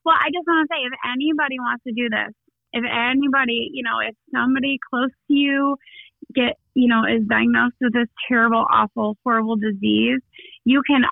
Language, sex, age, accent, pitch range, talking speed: English, female, 20-39, American, 220-270 Hz, 185 wpm